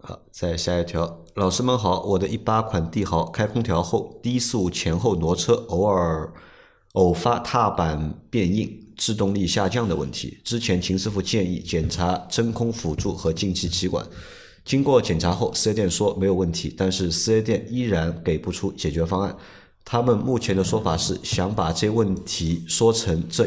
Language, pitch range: Chinese, 85-110 Hz